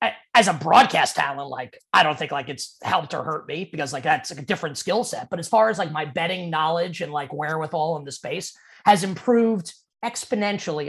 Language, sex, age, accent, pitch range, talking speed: English, male, 30-49, American, 170-220 Hz, 215 wpm